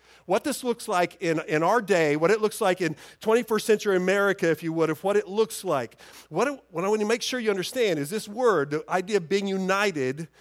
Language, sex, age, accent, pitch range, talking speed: English, male, 50-69, American, 145-210 Hz, 235 wpm